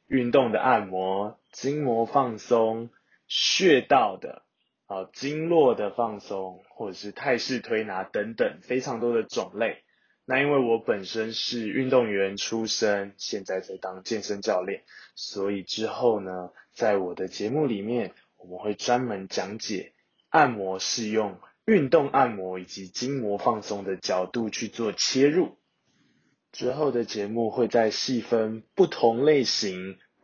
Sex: male